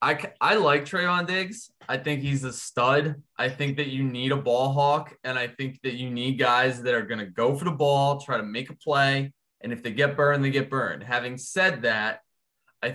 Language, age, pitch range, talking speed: English, 20-39, 120-145 Hz, 230 wpm